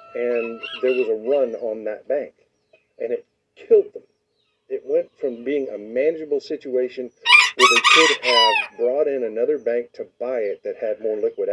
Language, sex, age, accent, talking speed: English, male, 50-69, American, 175 wpm